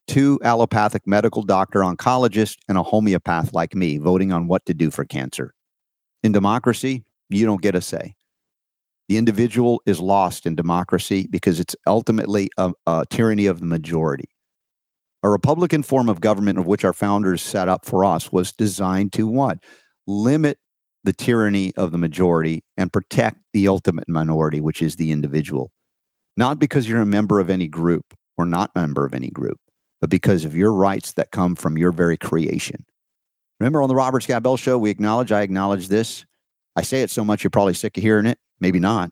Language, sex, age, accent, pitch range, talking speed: English, male, 50-69, American, 90-110 Hz, 185 wpm